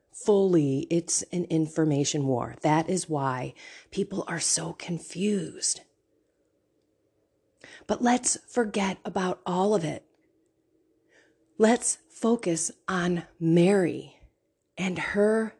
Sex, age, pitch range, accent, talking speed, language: female, 30-49, 175-240 Hz, American, 95 wpm, English